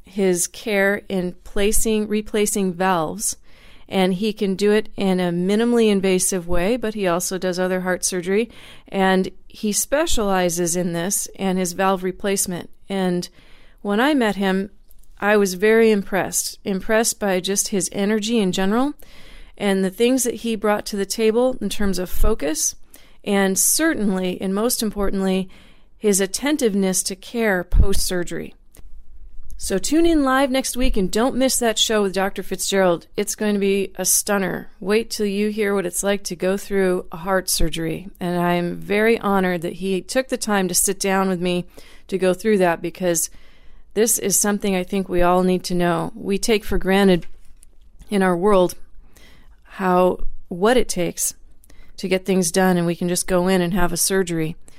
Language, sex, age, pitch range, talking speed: English, female, 40-59, 180-215 Hz, 175 wpm